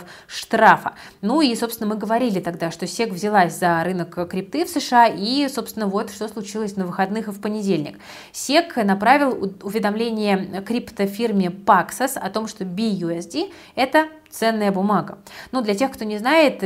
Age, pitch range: 20-39, 190-230 Hz